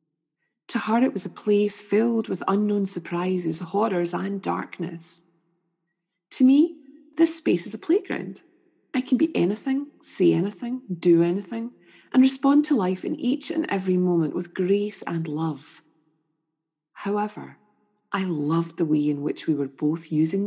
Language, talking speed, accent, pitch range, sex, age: English, 150 wpm, British, 160-235 Hz, female, 40-59